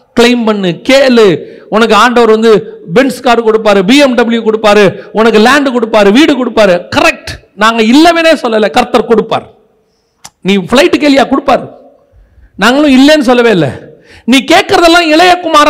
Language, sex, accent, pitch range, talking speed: Tamil, male, native, 210-300 Hz, 40 wpm